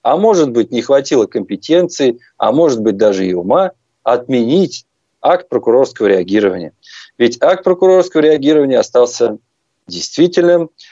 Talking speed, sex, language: 120 wpm, male, Russian